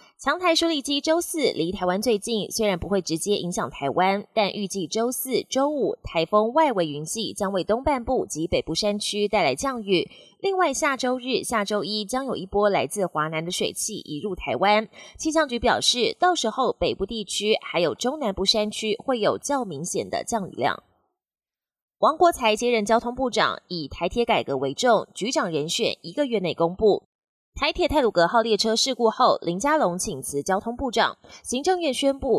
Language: Chinese